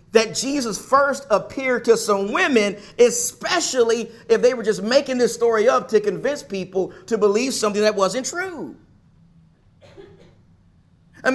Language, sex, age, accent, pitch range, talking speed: English, male, 40-59, American, 180-250 Hz, 135 wpm